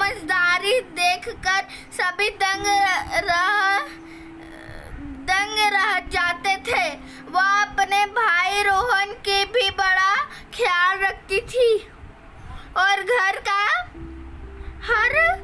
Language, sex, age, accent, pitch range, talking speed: Hindi, female, 20-39, native, 350-465 Hz, 90 wpm